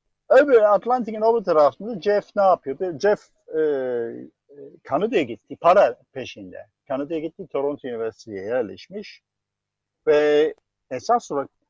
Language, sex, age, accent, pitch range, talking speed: Turkish, male, 50-69, native, 140-210 Hz, 105 wpm